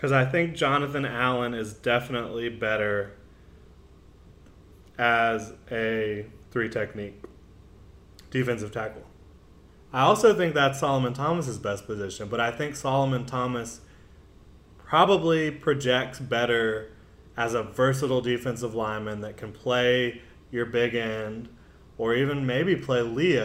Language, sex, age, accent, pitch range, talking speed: English, male, 20-39, American, 105-125 Hz, 115 wpm